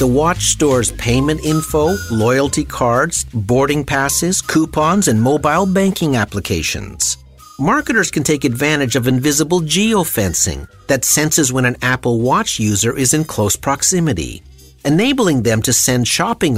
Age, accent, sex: 50-69, American, male